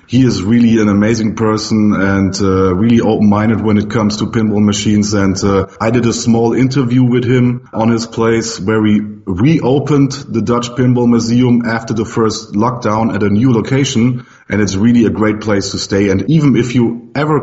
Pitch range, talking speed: 105-125 Hz, 195 wpm